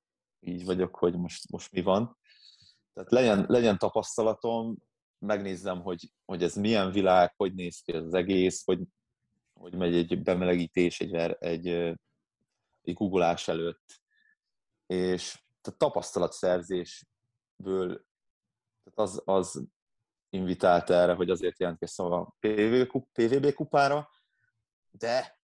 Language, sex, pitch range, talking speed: Hungarian, male, 90-120 Hz, 110 wpm